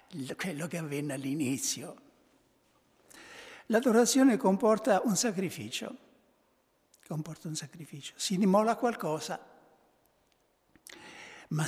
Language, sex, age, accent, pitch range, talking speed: Italian, male, 60-79, native, 155-210 Hz, 75 wpm